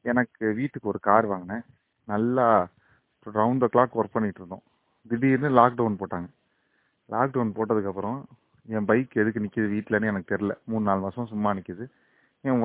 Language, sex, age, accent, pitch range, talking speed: Tamil, male, 30-49, native, 105-140 Hz, 140 wpm